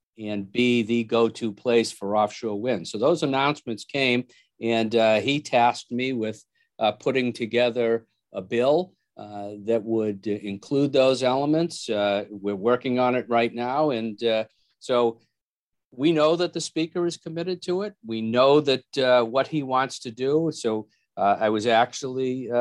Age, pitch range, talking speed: 50-69, 110-130 Hz, 165 wpm